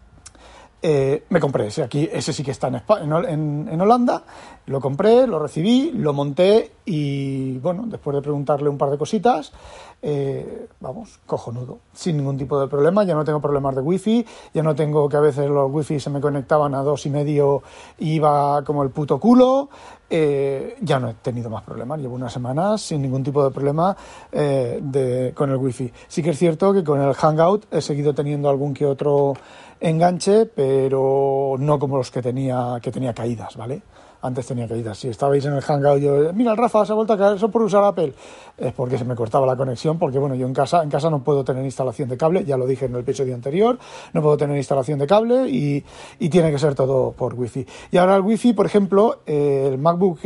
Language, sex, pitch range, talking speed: Spanish, male, 135-185 Hz, 215 wpm